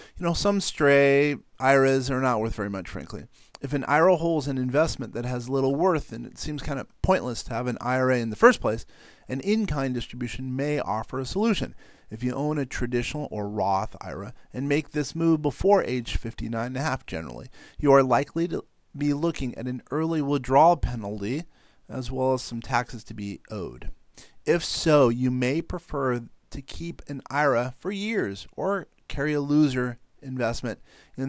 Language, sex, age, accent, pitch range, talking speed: English, male, 40-59, American, 115-145 Hz, 185 wpm